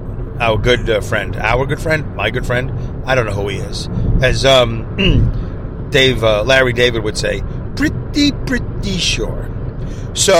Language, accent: English, American